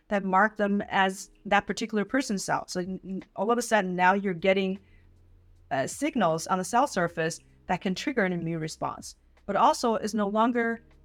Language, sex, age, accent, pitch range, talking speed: English, female, 30-49, American, 175-220 Hz, 180 wpm